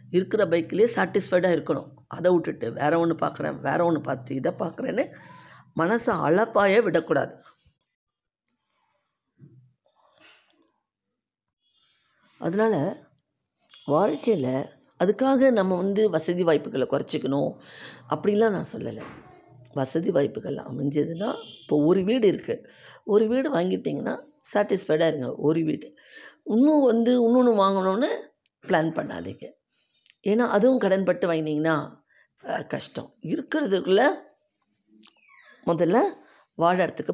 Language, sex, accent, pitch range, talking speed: Tamil, female, native, 160-225 Hz, 90 wpm